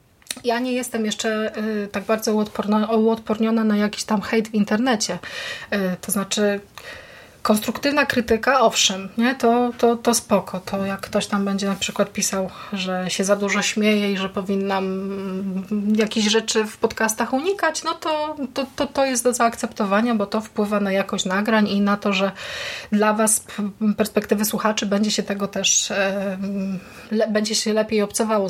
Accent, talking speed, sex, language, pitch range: native, 160 wpm, female, Polish, 195-230 Hz